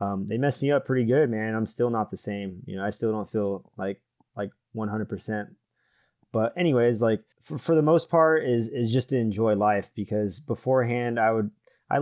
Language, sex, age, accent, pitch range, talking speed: English, male, 20-39, American, 105-125 Hz, 205 wpm